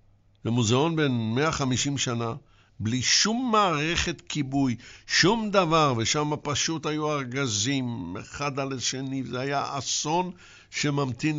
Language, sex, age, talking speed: English, male, 60-79, 110 wpm